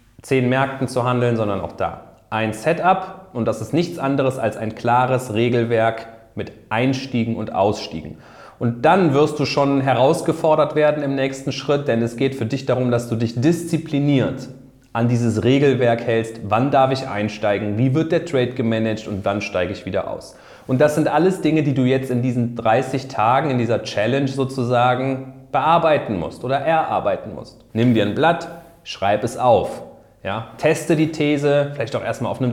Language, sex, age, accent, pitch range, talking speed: German, male, 30-49, German, 115-140 Hz, 180 wpm